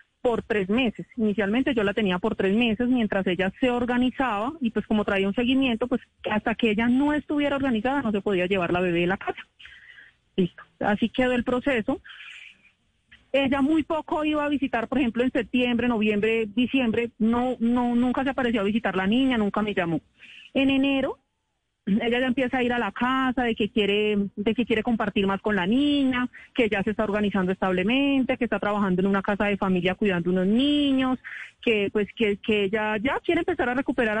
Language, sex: Spanish, female